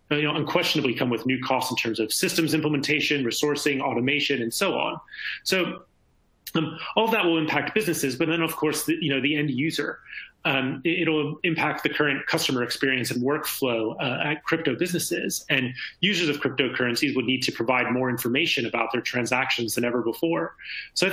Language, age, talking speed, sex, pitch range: English, 30-49, 185 wpm, male, 130-160 Hz